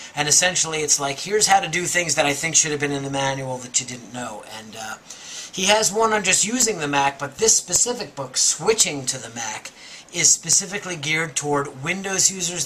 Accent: American